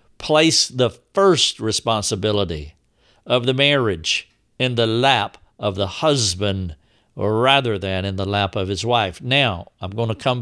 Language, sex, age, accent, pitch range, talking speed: English, male, 60-79, American, 105-130 Hz, 155 wpm